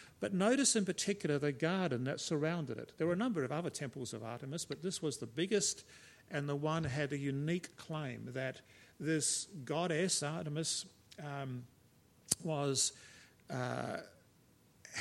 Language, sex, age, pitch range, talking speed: English, male, 50-69, 135-165 Hz, 150 wpm